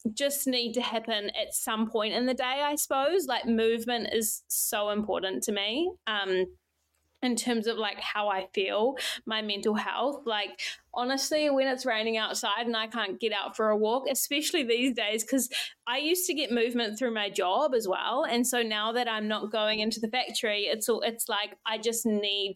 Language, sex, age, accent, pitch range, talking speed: English, female, 20-39, Australian, 200-245 Hz, 200 wpm